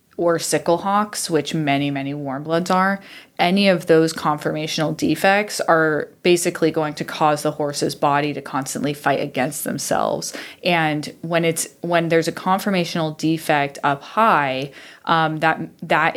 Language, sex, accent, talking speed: English, female, American, 150 wpm